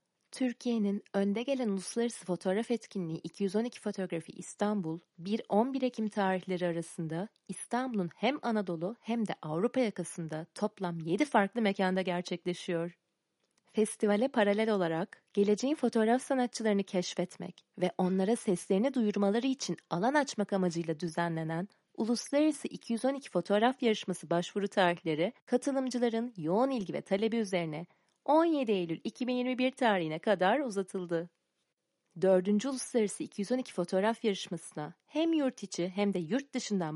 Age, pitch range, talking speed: 30-49, 180-235 Hz, 115 wpm